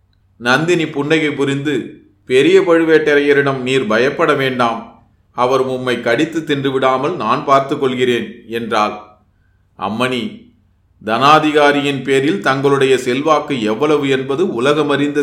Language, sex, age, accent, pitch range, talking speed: Tamil, male, 30-49, native, 115-140 Hz, 95 wpm